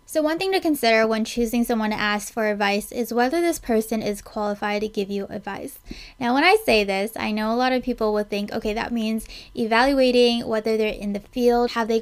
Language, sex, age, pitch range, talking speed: English, female, 20-39, 215-250 Hz, 230 wpm